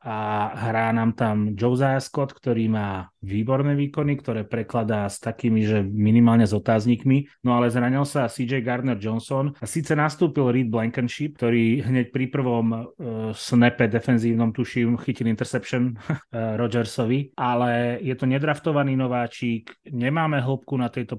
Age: 30-49